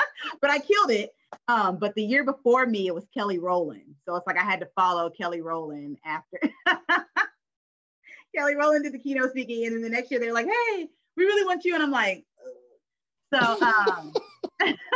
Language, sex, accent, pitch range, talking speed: English, female, American, 155-250 Hz, 195 wpm